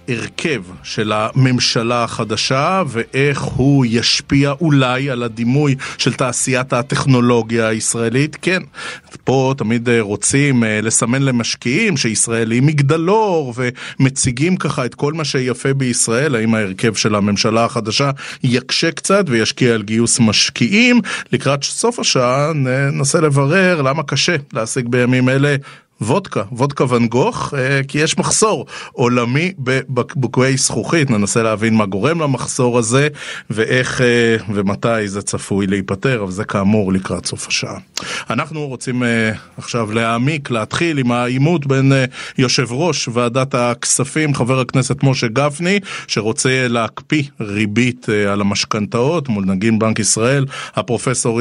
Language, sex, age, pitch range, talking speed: Hebrew, male, 30-49, 115-140 Hz, 120 wpm